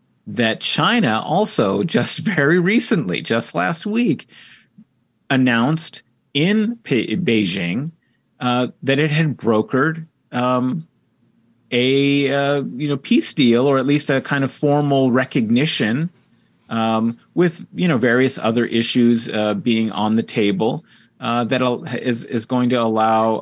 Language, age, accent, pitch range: English, 30-49, American, 105-135 Hz